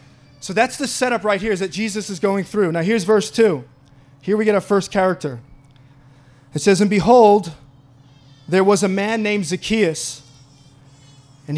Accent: American